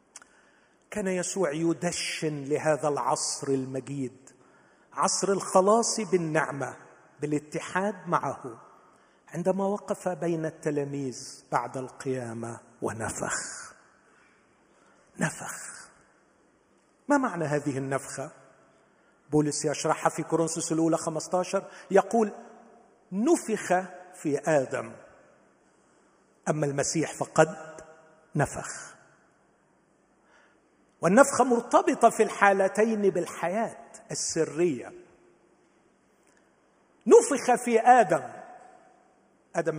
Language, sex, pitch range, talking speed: Arabic, male, 155-230 Hz, 70 wpm